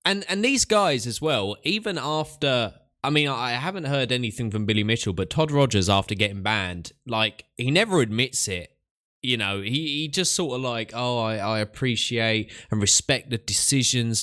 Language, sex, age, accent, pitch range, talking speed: English, male, 20-39, British, 95-135 Hz, 185 wpm